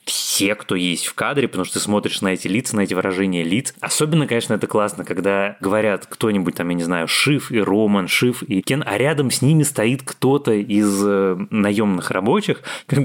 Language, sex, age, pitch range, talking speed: Russian, male, 20-39, 95-125 Hz, 200 wpm